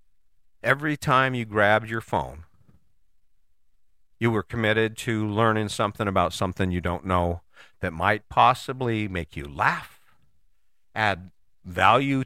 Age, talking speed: 50-69, 120 wpm